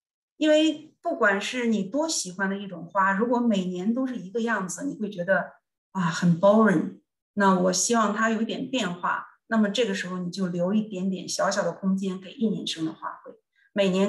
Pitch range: 190-235 Hz